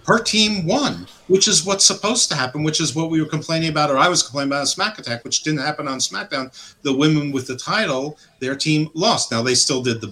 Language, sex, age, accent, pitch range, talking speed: English, male, 50-69, American, 125-170 Hz, 250 wpm